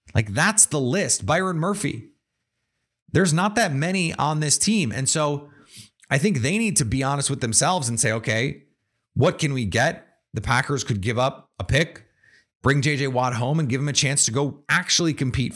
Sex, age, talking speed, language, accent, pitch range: male, 30-49, 195 wpm, English, American, 110-155 Hz